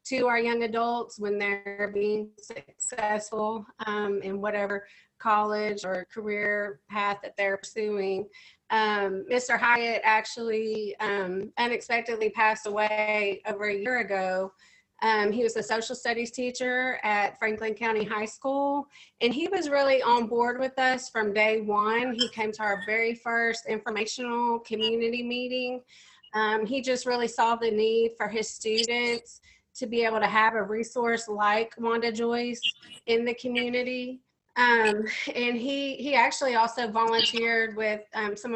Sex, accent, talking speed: female, American, 150 wpm